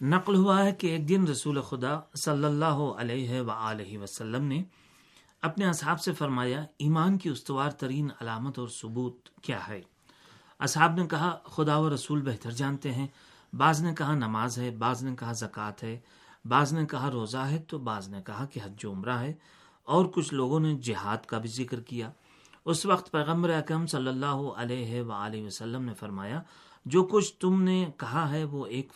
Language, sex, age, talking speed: Urdu, male, 40-59, 165 wpm